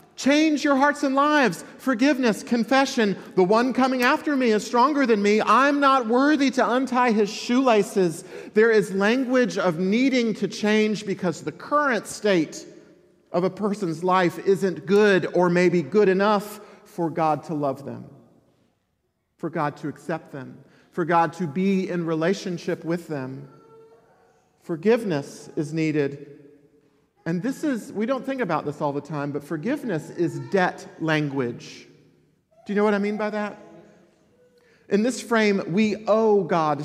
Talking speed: 155 wpm